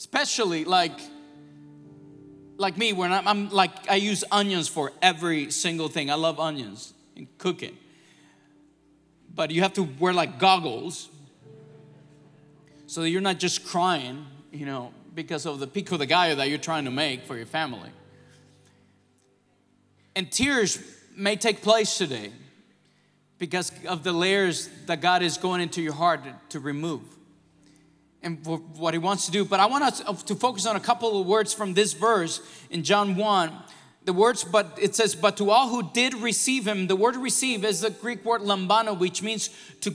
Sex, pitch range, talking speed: male, 155-220 Hz, 170 wpm